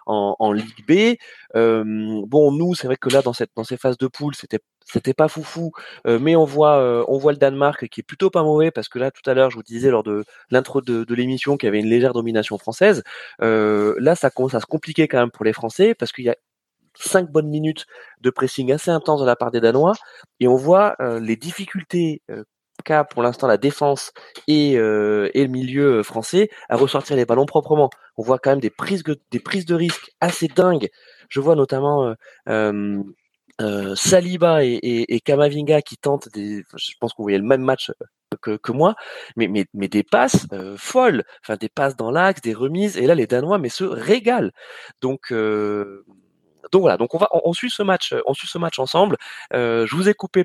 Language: French